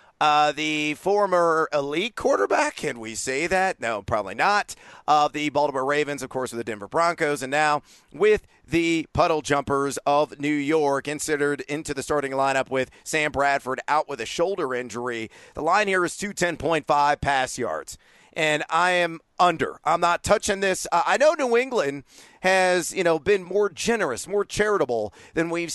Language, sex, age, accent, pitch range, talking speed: English, male, 40-59, American, 140-170 Hz, 180 wpm